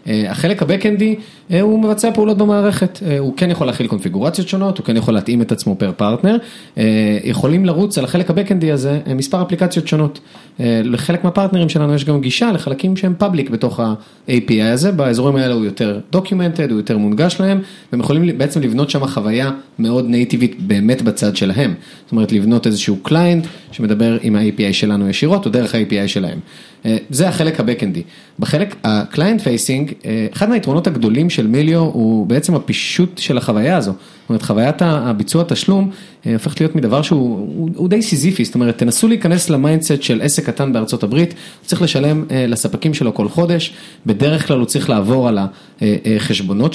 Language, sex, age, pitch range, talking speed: Hebrew, male, 30-49, 115-180 Hz, 155 wpm